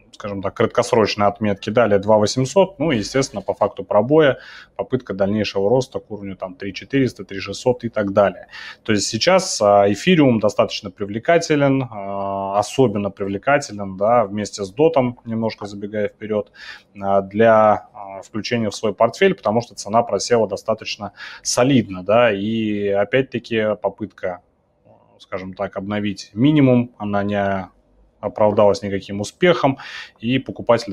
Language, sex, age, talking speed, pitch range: Russian, male, 20-39, 120 wpm, 100-120 Hz